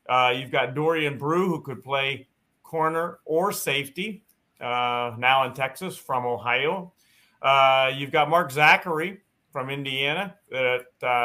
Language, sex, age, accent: English, male, 40-59, American